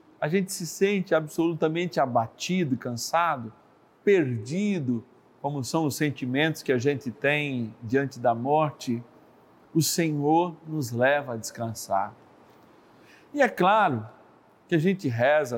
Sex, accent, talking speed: male, Brazilian, 125 wpm